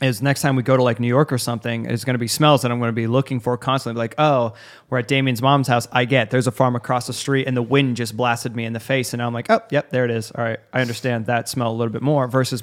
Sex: male